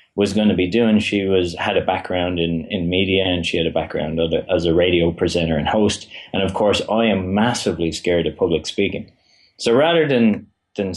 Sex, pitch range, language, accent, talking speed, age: male, 85-100 Hz, English, Irish, 210 wpm, 30-49